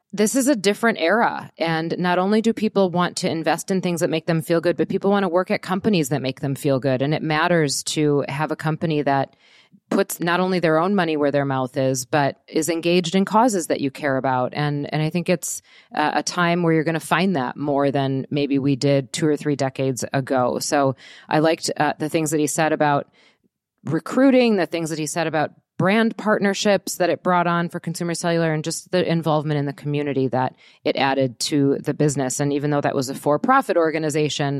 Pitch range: 145-195 Hz